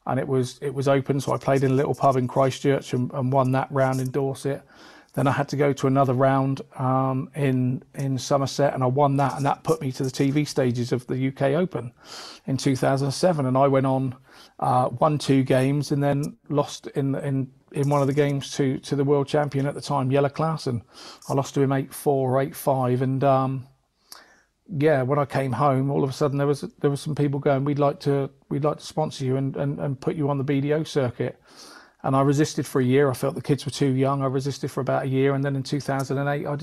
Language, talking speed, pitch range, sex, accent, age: English, 250 wpm, 135-150 Hz, male, British, 40-59